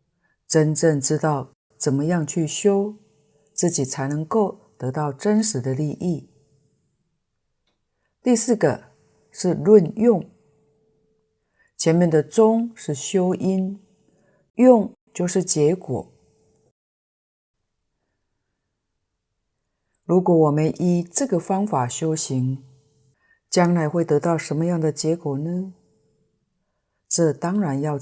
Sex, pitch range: female, 145-190 Hz